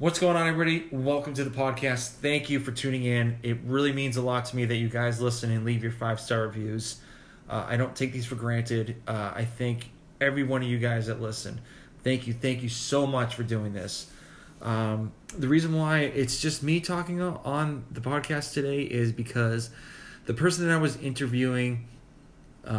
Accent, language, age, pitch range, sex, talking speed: American, English, 20-39, 115-130 Hz, male, 205 wpm